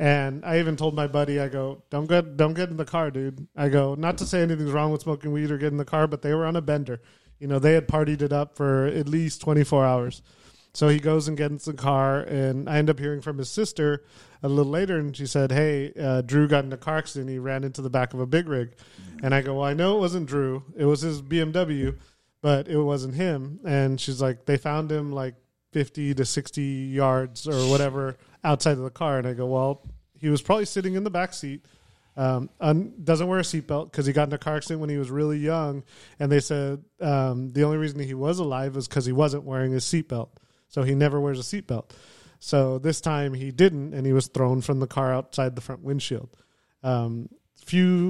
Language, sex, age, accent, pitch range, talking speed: English, male, 30-49, American, 135-155 Hz, 240 wpm